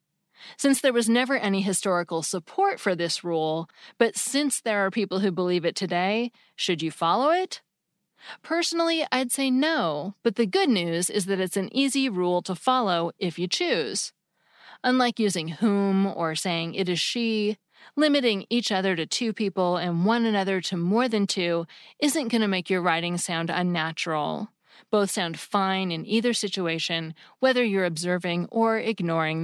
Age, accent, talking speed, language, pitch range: 30-49, American, 165 wpm, English, 175-235 Hz